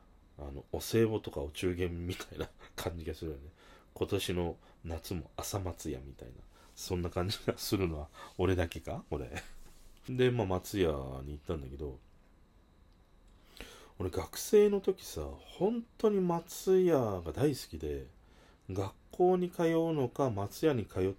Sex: male